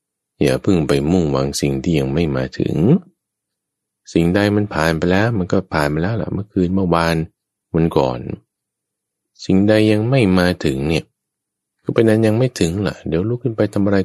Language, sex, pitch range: Thai, male, 70-100 Hz